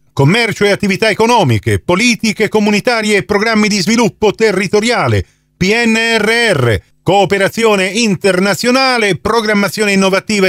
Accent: native